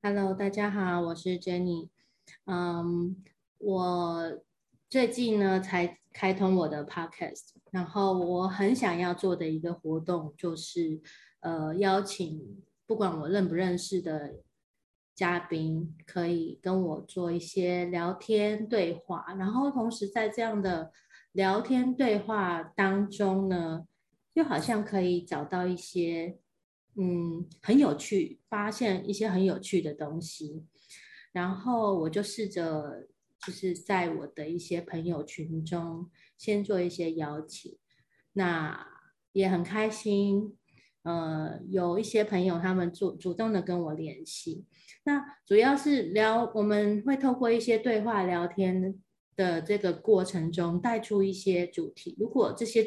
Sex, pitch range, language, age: female, 170-210 Hz, Chinese, 20-39